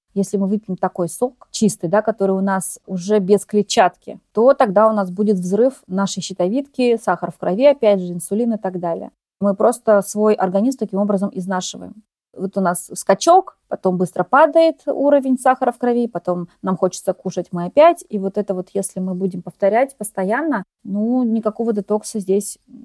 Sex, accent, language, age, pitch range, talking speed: female, native, Russian, 20-39, 195-245 Hz, 175 wpm